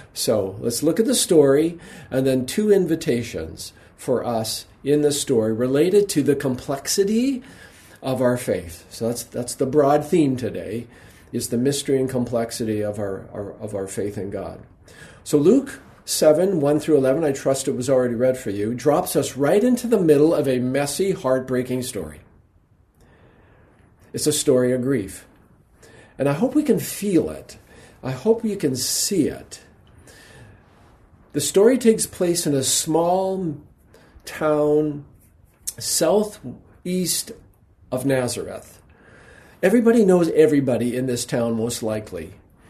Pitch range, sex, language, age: 120-165 Hz, male, English, 50-69